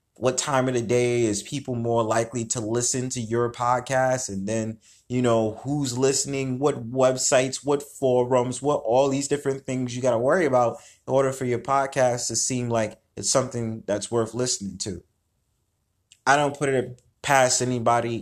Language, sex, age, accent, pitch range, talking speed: English, male, 20-39, American, 105-125 Hz, 180 wpm